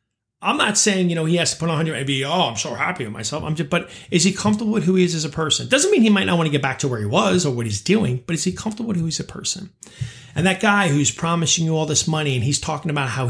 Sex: male